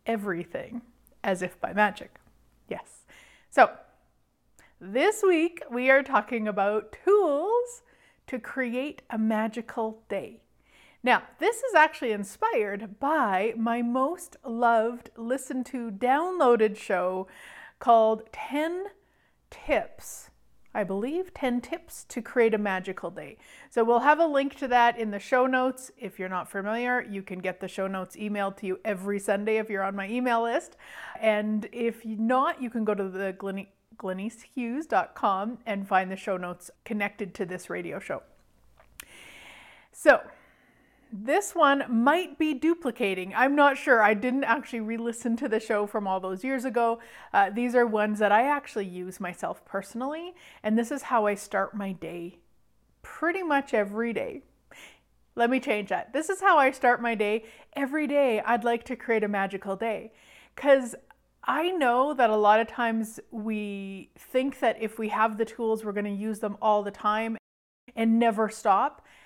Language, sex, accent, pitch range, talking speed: English, female, American, 205-265 Hz, 160 wpm